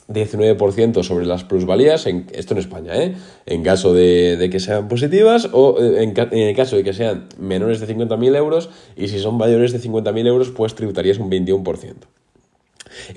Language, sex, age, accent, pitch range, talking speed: Spanish, male, 20-39, Spanish, 95-120 Hz, 180 wpm